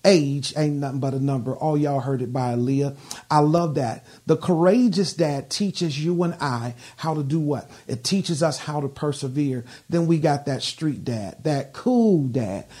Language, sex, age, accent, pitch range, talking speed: English, male, 40-59, American, 140-170 Hz, 190 wpm